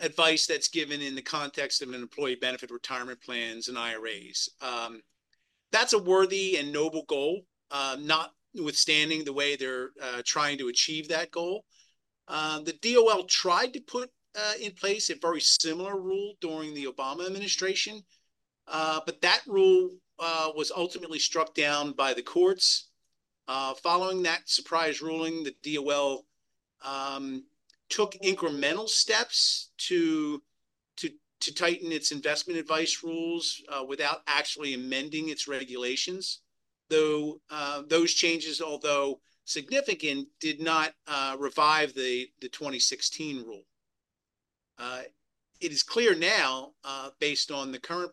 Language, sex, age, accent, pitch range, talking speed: English, male, 40-59, American, 135-175 Hz, 135 wpm